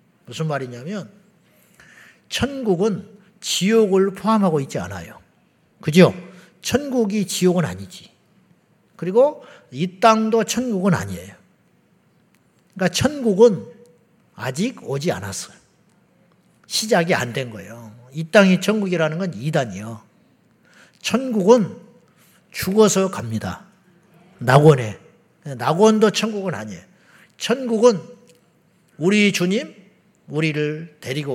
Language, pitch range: Korean, 155-215 Hz